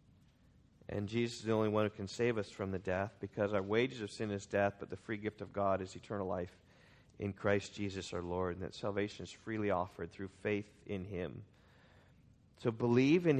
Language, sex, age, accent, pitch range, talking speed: English, male, 40-59, American, 105-150 Hz, 210 wpm